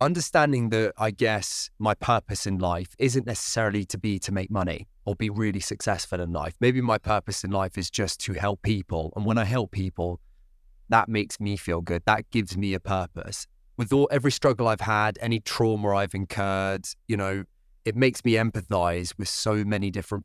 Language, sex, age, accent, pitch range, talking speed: English, male, 20-39, British, 95-110 Hz, 195 wpm